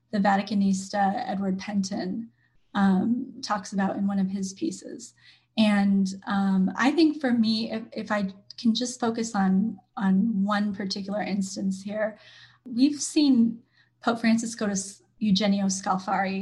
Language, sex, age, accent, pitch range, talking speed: English, female, 20-39, American, 195-230 Hz, 140 wpm